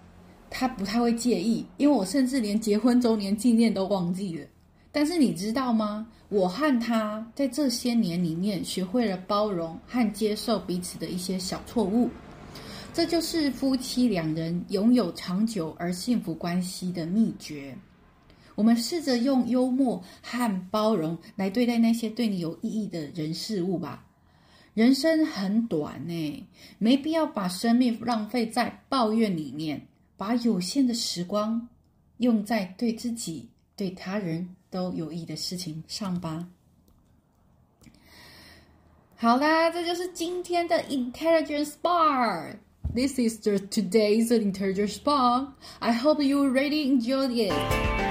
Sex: female